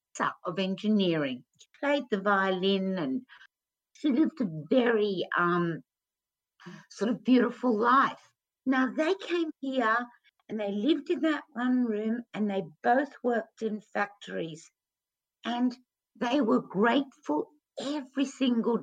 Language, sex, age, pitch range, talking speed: English, female, 60-79, 185-250 Hz, 125 wpm